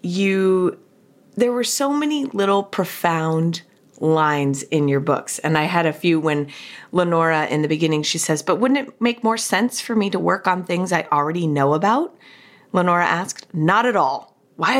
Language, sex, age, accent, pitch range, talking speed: English, female, 30-49, American, 155-195 Hz, 185 wpm